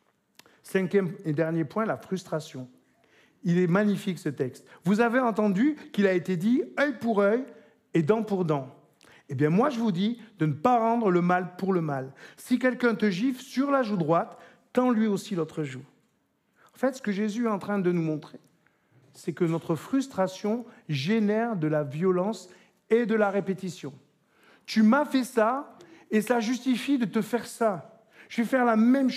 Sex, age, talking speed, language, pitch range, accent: male, 50-69, 190 wpm, French, 175-230 Hz, French